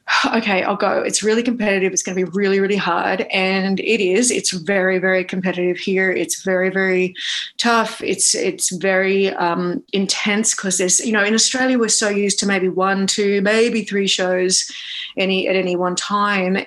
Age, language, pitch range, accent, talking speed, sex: 30-49, English, 190-225 Hz, Australian, 185 wpm, female